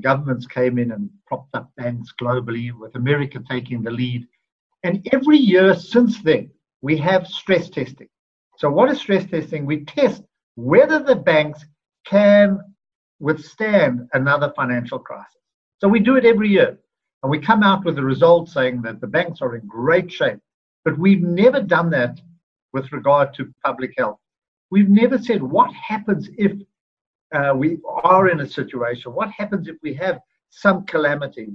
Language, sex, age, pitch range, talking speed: English, male, 60-79, 140-205 Hz, 165 wpm